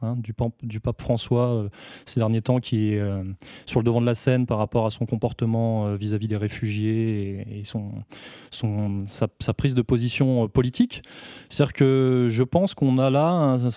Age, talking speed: 20-39, 205 wpm